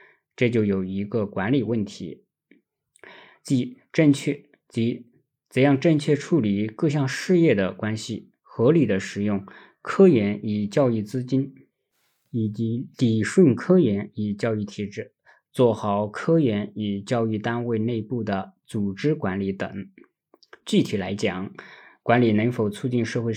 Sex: male